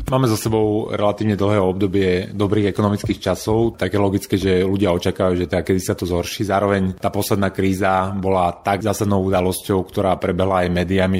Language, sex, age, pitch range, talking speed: Slovak, male, 30-49, 90-105 Hz, 170 wpm